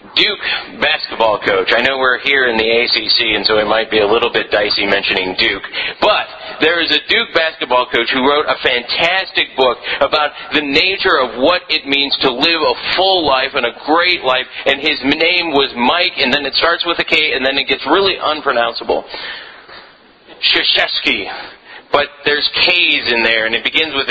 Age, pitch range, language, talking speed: 40-59, 135-170 Hz, English, 190 wpm